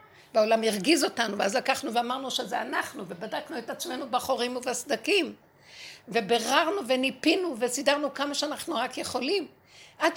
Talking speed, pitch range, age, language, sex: 125 wpm, 225-295 Hz, 60-79, Hebrew, female